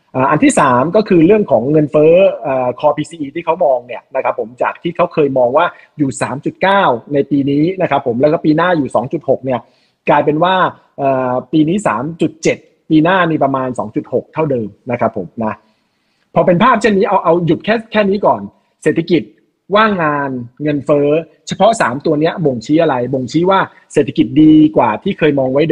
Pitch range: 140-190 Hz